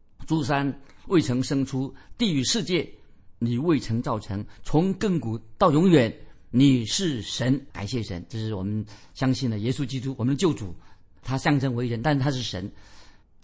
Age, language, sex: 50-69, Chinese, male